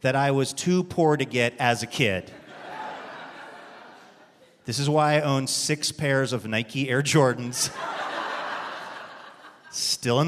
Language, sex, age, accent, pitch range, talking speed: English, male, 30-49, American, 130-165 Hz, 135 wpm